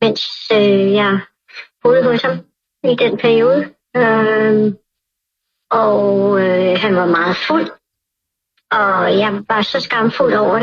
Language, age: Danish, 30-49